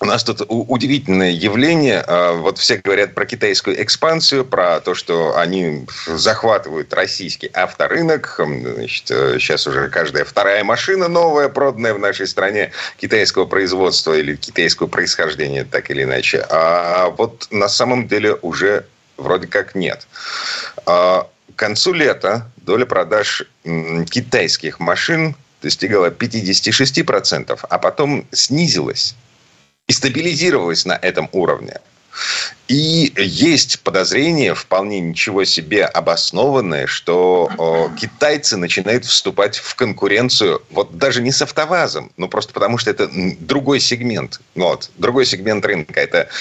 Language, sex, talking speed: Russian, male, 120 wpm